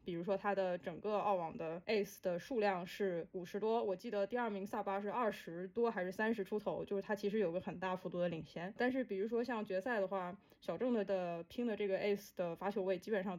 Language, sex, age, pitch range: Chinese, female, 20-39, 185-220 Hz